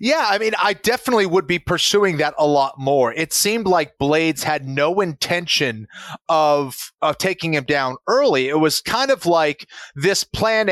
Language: English